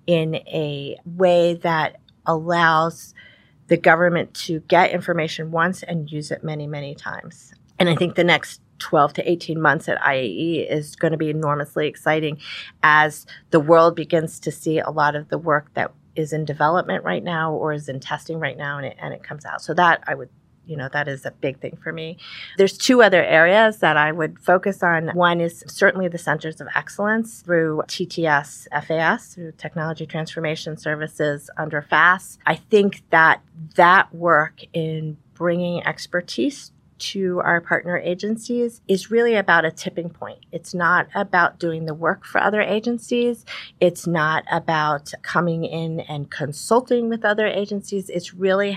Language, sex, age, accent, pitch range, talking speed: English, female, 30-49, American, 155-180 Hz, 170 wpm